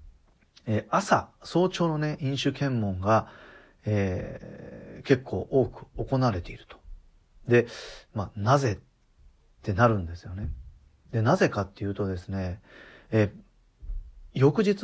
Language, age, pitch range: Japanese, 40-59, 100-135 Hz